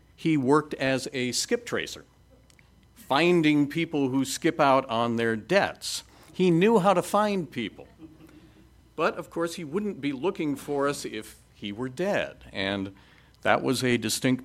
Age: 50-69